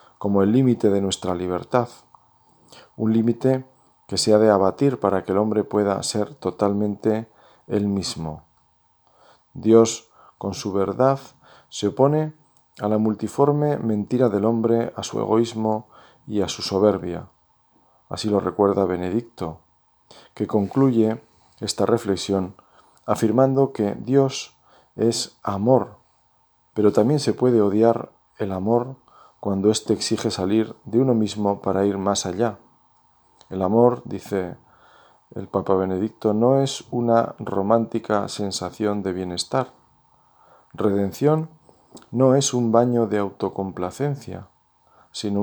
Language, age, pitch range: Spanish, 40-59, 100-120 Hz